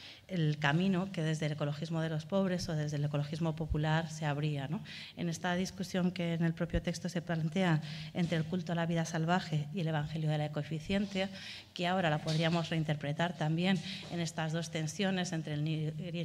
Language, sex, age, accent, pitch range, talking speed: Spanish, female, 30-49, Spanish, 155-170 Hz, 190 wpm